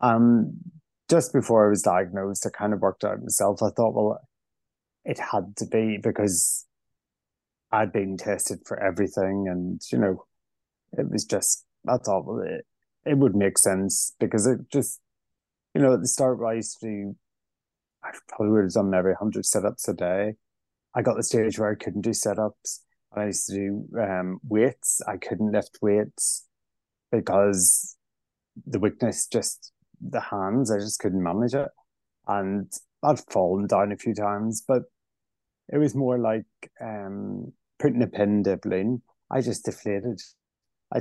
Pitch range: 100-115 Hz